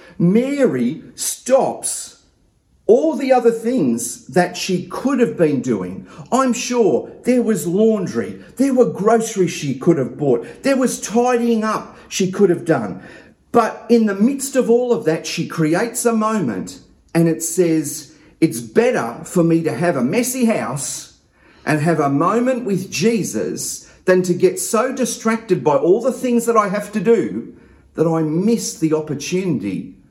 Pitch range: 170-240 Hz